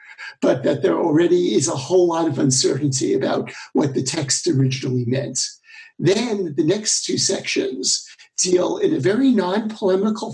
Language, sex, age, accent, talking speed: English, male, 60-79, American, 150 wpm